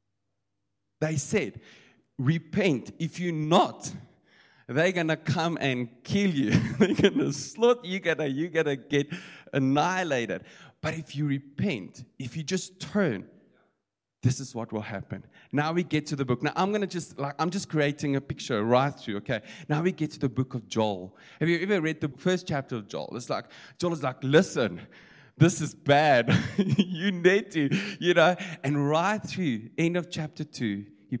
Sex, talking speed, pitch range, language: male, 180 wpm, 120-160 Hz, English